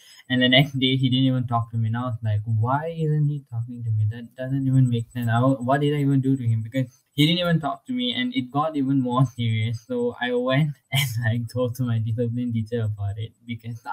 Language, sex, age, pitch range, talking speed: English, male, 10-29, 115-140 Hz, 260 wpm